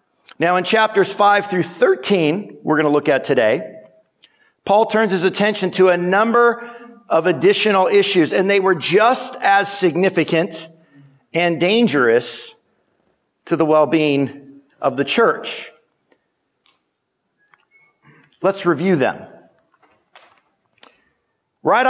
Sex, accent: male, American